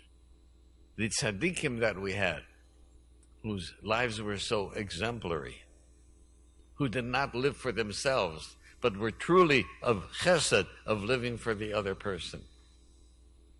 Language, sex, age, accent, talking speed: English, male, 60-79, American, 120 wpm